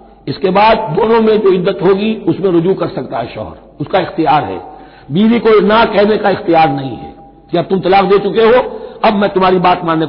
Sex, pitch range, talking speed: male, 165-225 Hz, 215 wpm